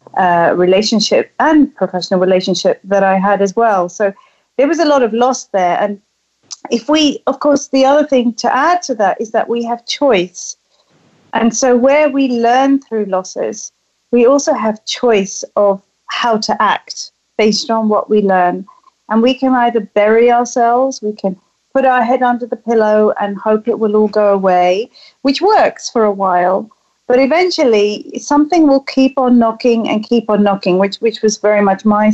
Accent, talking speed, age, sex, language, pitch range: British, 185 wpm, 40-59, female, English, 195-240 Hz